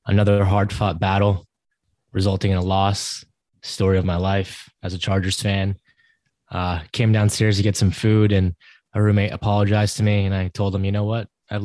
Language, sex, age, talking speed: English, male, 20-39, 185 wpm